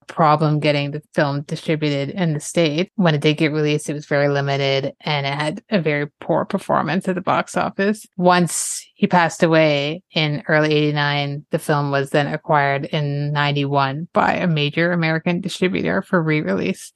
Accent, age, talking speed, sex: American, 30-49, 175 wpm, female